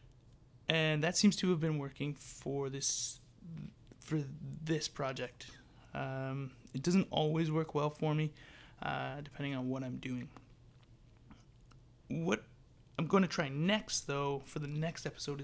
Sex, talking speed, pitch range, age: male, 145 wpm, 125-155 Hz, 20-39